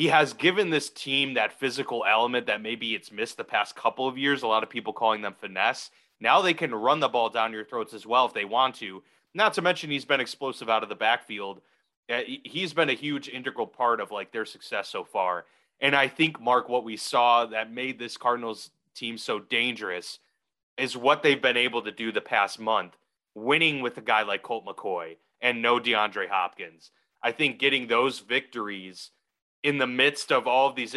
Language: English